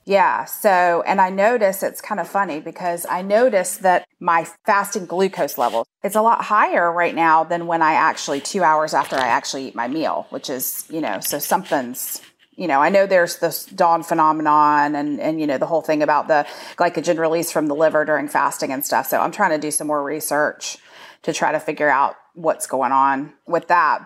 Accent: American